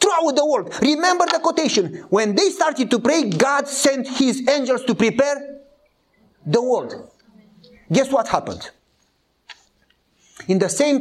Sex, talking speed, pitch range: male, 135 wpm, 150-225 Hz